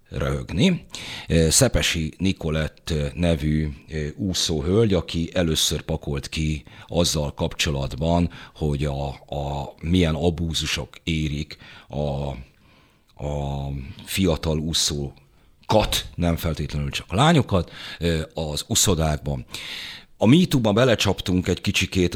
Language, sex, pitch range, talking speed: Hungarian, male, 80-105 Hz, 90 wpm